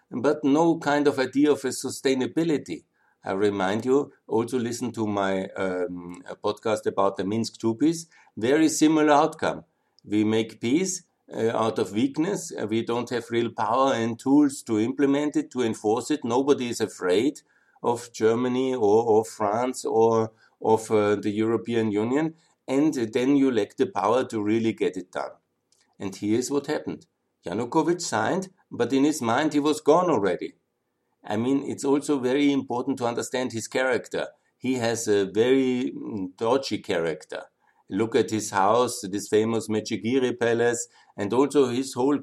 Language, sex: German, male